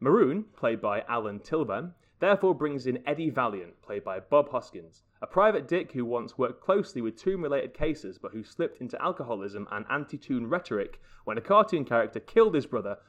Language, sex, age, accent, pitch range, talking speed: English, male, 30-49, British, 110-170 Hz, 180 wpm